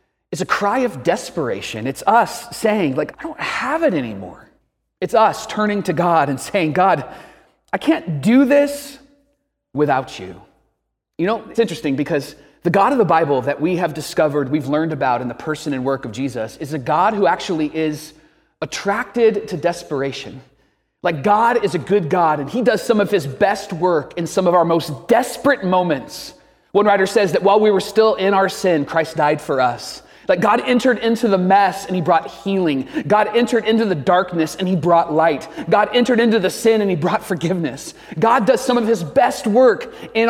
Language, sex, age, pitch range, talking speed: English, male, 30-49, 150-220 Hz, 200 wpm